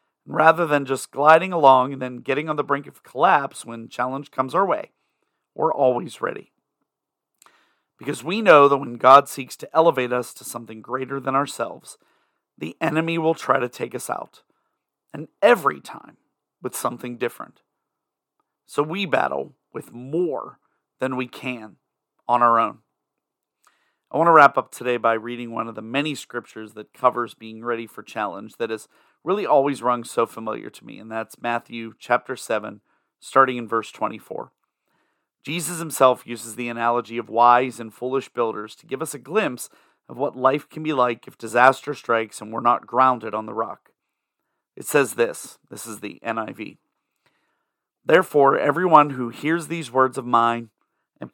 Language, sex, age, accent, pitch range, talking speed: English, male, 40-59, American, 120-145 Hz, 170 wpm